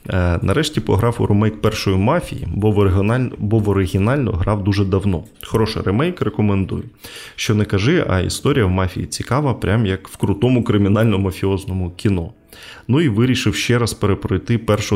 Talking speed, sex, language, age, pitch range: 150 wpm, male, Ukrainian, 20-39, 90-115 Hz